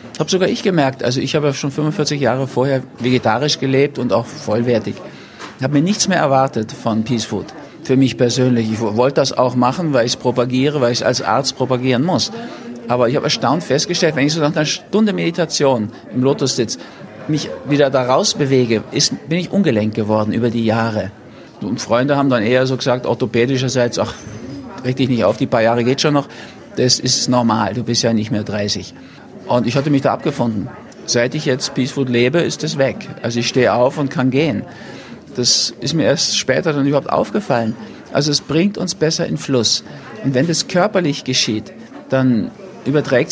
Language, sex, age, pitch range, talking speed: German, male, 50-69, 120-145 Hz, 200 wpm